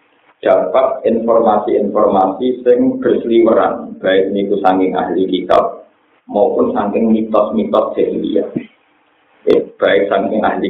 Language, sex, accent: Indonesian, male, native